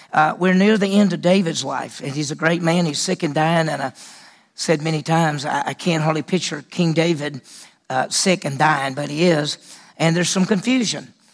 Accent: American